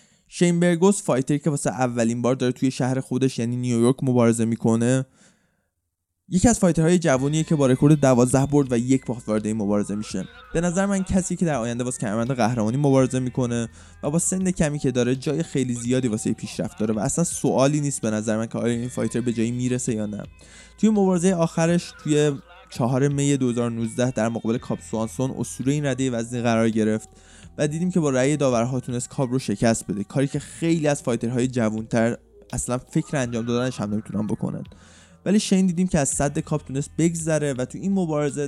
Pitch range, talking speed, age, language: 115-150 Hz, 190 wpm, 20-39, Persian